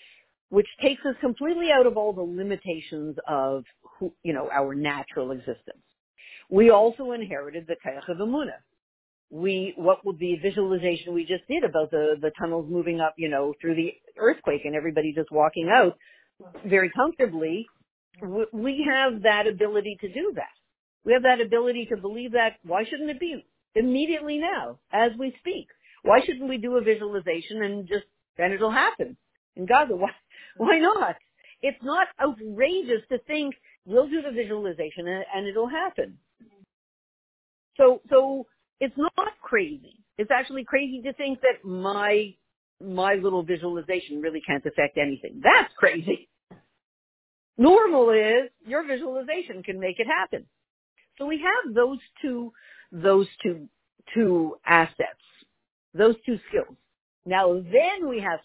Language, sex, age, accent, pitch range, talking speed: English, female, 50-69, American, 170-265 Hz, 145 wpm